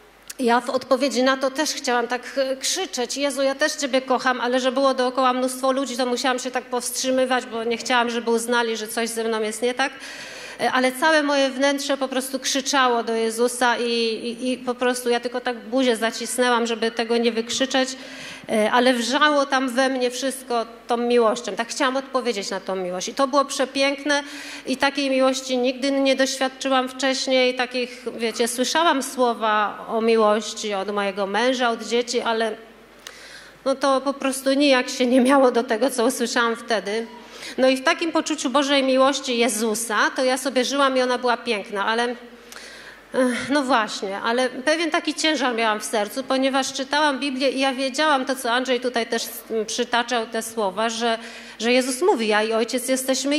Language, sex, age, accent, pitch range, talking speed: Polish, female, 30-49, native, 235-270 Hz, 180 wpm